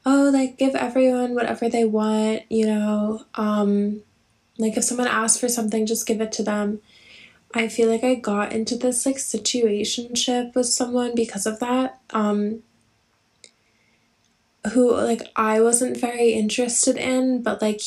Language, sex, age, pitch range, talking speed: English, female, 10-29, 215-240 Hz, 150 wpm